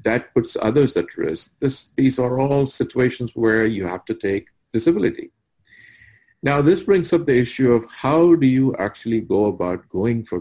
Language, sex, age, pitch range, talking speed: English, male, 50-69, 105-125 Hz, 175 wpm